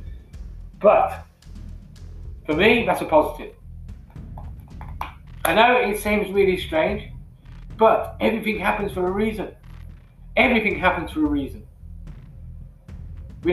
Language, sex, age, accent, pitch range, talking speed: English, male, 40-59, British, 140-205 Hz, 105 wpm